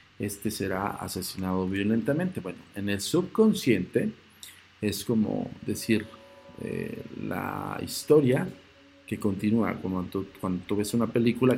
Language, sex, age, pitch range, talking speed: Spanish, male, 50-69, 100-135 Hz, 110 wpm